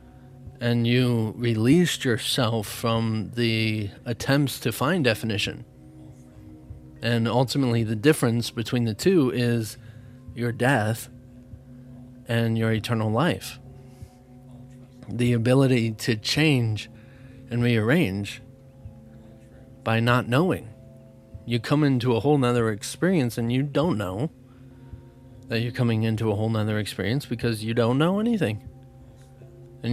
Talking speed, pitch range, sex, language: 115 wpm, 115-135 Hz, male, English